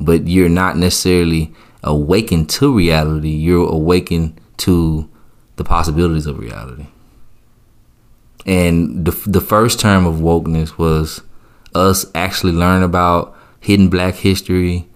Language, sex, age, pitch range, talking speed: English, male, 20-39, 85-105 Hz, 115 wpm